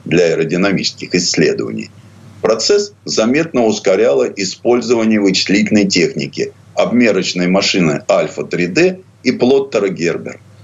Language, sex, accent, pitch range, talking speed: Russian, male, native, 90-130 Hz, 90 wpm